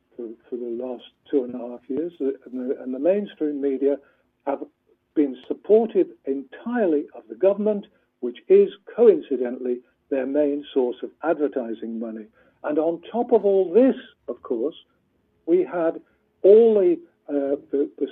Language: English